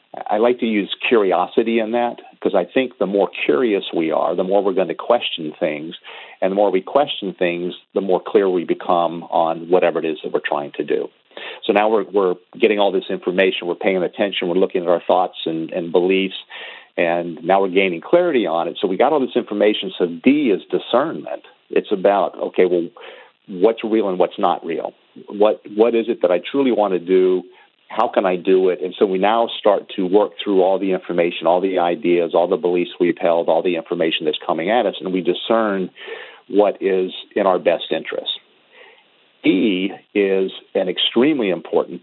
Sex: male